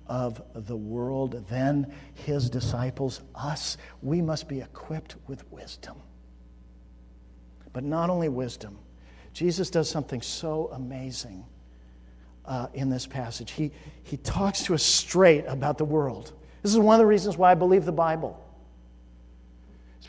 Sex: male